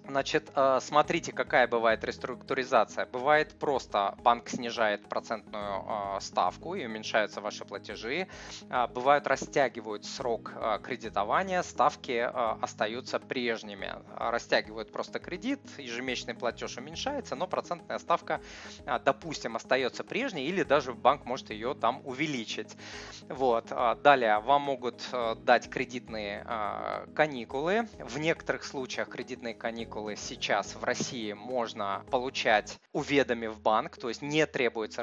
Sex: male